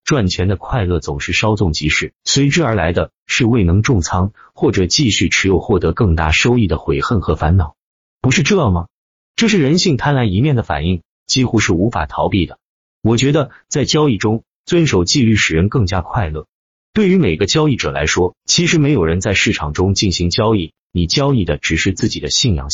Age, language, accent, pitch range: 30-49, Chinese, native, 85-130 Hz